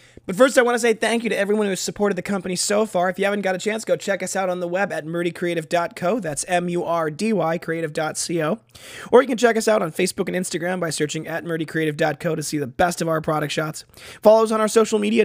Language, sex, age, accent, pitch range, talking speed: English, male, 20-39, American, 160-200 Hz, 250 wpm